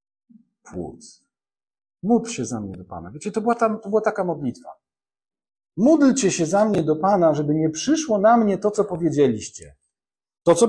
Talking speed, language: 175 wpm, Polish